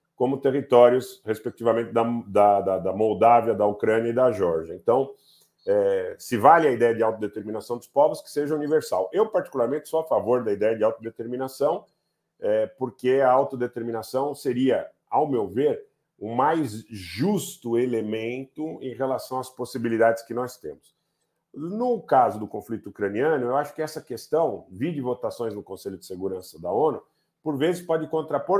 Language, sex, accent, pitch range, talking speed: Portuguese, male, Brazilian, 110-145 Hz, 155 wpm